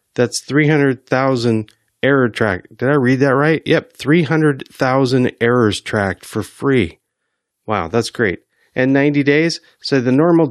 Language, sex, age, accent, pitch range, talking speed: English, male, 30-49, American, 95-130 Hz, 135 wpm